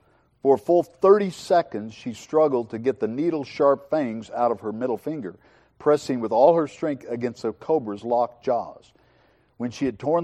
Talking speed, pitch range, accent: 180 wpm, 115-150 Hz, American